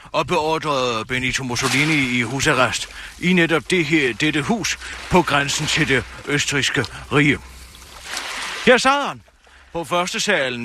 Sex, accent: male, German